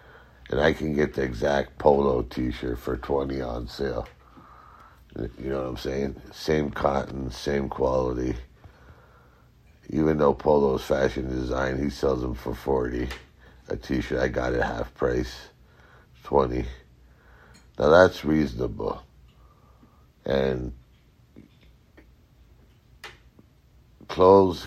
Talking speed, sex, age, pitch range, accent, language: 105 wpm, male, 60-79, 65-70 Hz, American, English